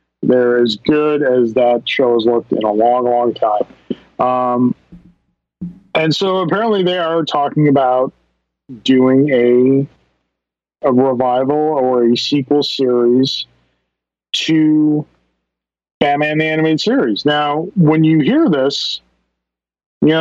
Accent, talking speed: American, 120 wpm